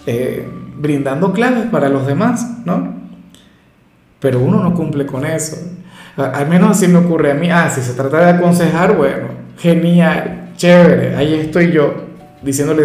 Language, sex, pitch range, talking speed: Spanish, male, 145-175 Hz, 155 wpm